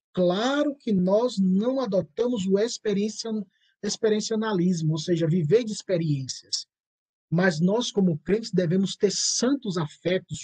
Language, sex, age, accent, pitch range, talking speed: Portuguese, male, 20-39, Brazilian, 150-185 Hz, 115 wpm